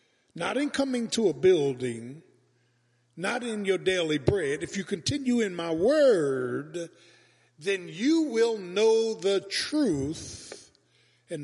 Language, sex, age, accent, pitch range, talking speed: English, male, 50-69, American, 120-190 Hz, 125 wpm